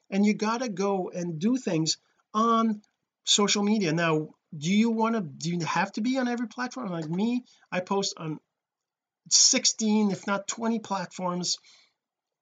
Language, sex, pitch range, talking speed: English, male, 165-215 Hz, 165 wpm